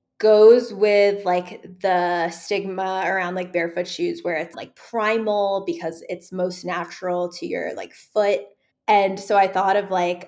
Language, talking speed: English, 160 wpm